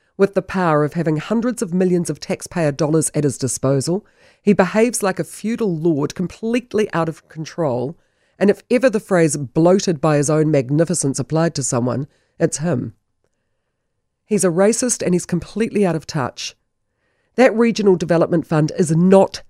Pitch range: 140-210 Hz